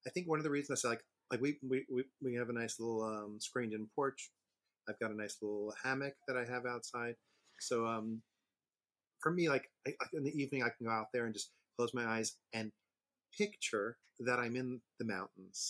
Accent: American